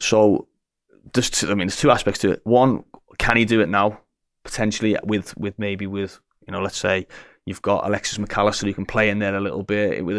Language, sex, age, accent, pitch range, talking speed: English, male, 20-39, British, 100-110 Hz, 220 wpm